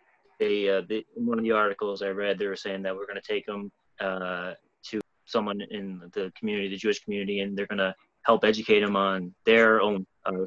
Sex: male